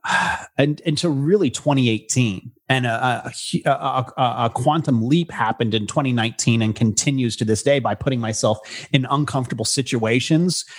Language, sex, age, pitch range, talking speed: English, male, 30-49, 120-155 Hz, 145 wpm